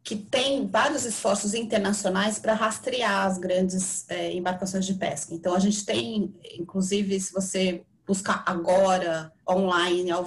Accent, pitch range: Brazilian, 175-205 Hz